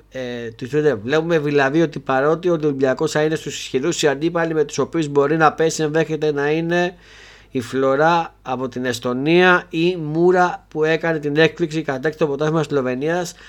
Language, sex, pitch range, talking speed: Greek, male, 140-175 Hz, 170 wpm